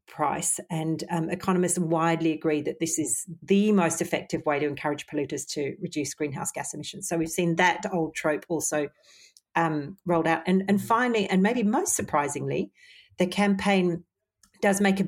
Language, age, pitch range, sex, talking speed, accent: English, 40-59, 160-190 Hz, female, 170 wpm, Australian